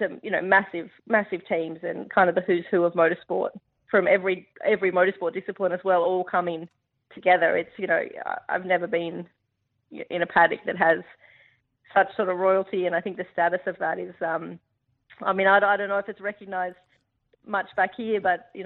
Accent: Australian